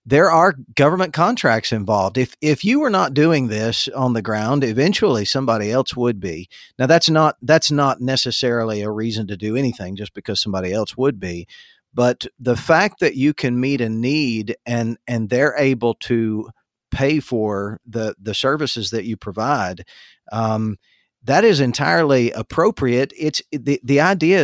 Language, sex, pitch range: English, male, 105-130 Hz